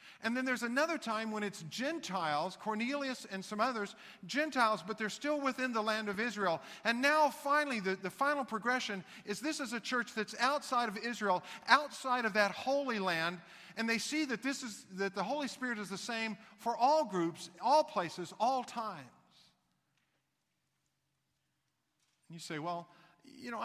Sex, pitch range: male, 185-240 Hz